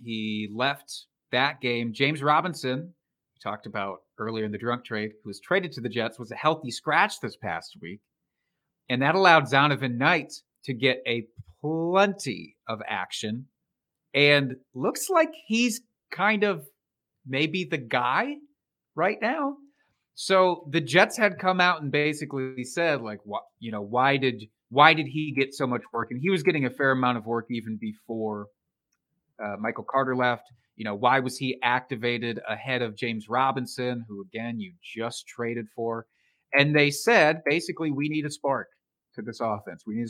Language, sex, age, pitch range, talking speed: English, male, 30-49, 120-160 Hz, 170 wpm